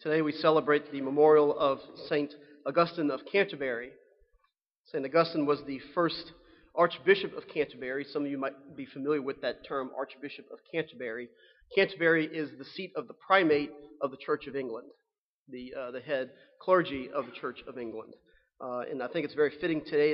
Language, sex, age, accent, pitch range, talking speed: English, male, 40-59, American, 135-160 Hz, 180 wpm